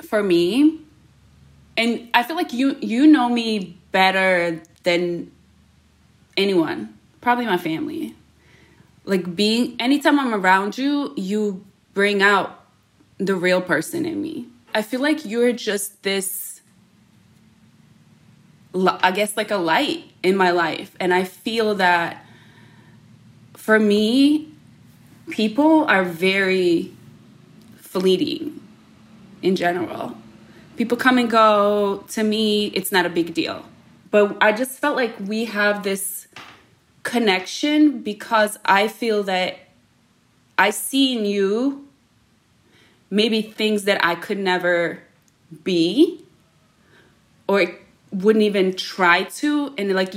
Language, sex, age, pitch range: English, female, 20-39, 185-230 Hz